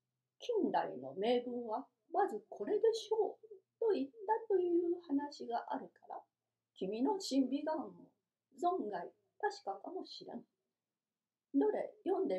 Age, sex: 40-59, female